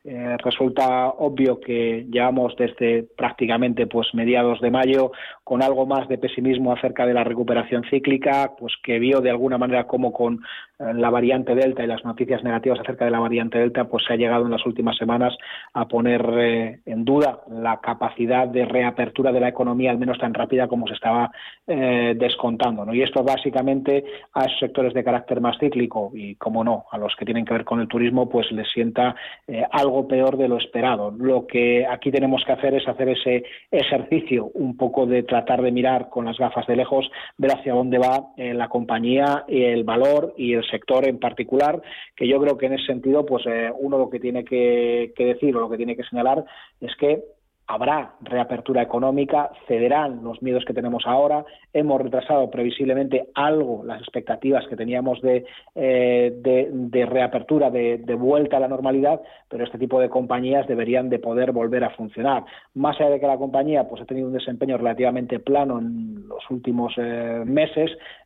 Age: 30-49